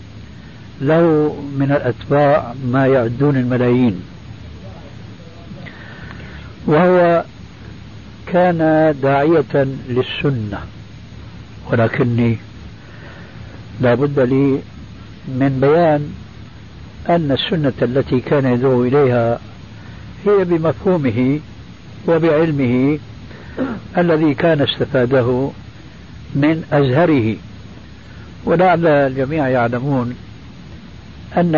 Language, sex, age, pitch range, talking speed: Arabic, male, 60-79, 110-145 Hz, 65 wpm